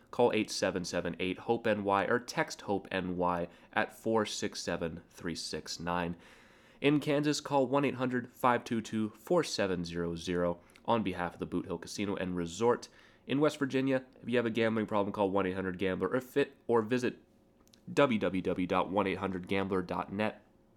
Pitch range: 90-115 Hz